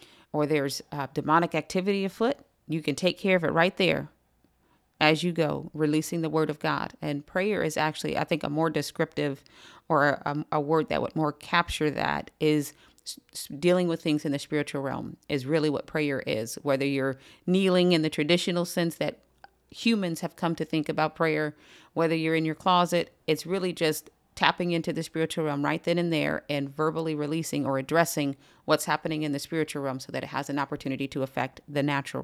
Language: English